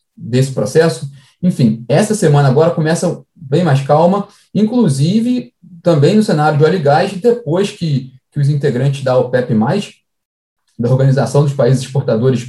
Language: Portuguese